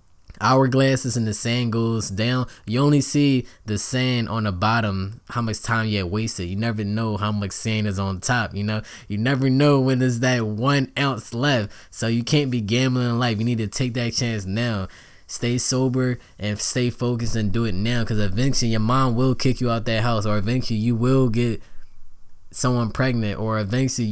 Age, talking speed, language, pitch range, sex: 10-29, 205 wpm, English, 105-125 Hz, male